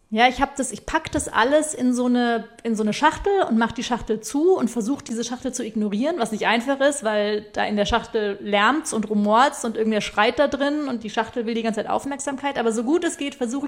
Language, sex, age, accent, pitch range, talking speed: German, female, 30-49, German, 220-270 Hz, 250 wpm